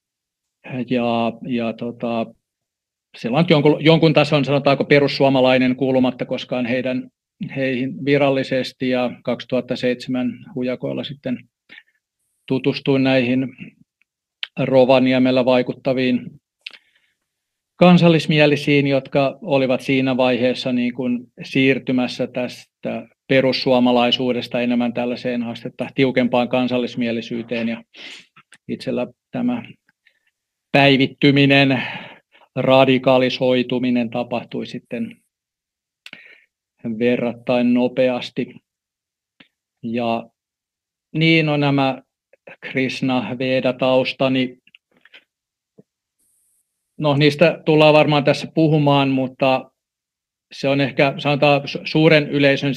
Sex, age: male, 40-59